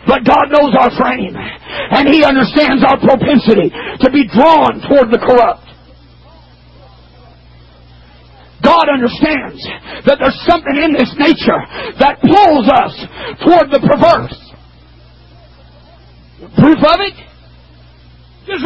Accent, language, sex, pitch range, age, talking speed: American, English, male, 255-360 Hz, 50-69, 110 wpm